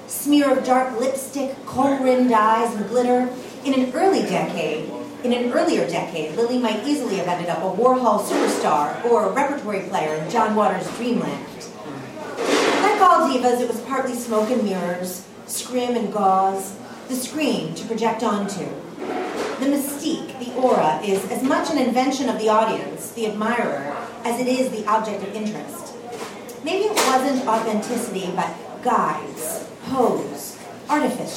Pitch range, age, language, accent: 195-255 Hz, 40-59, English, American